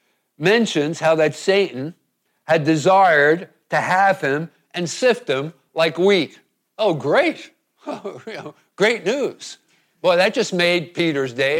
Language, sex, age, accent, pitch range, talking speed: English, male, 50-69, American, 135-175 Hz, 125 wpm